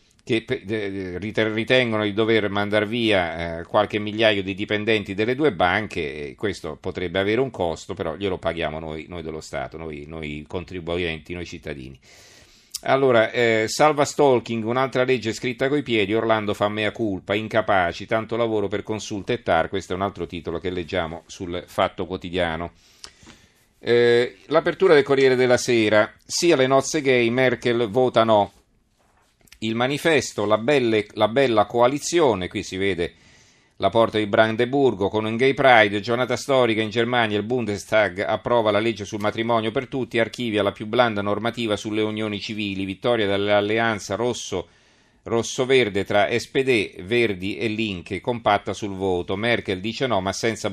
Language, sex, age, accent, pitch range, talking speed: Italian, male, 40-59, native, 100-120 Hz, 155 wpm